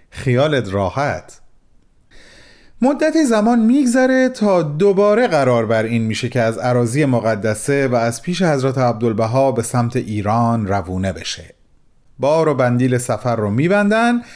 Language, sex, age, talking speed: Persian, male, 40-59, 130 wpm